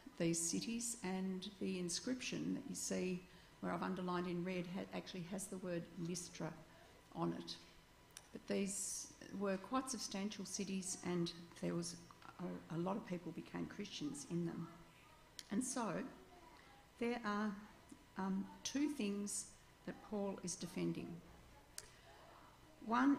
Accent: Australian